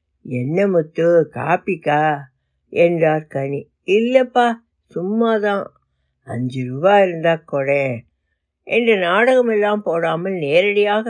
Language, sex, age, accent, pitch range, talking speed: Tamil, female, 60-79, native, 140-210 Hz, 85 wpm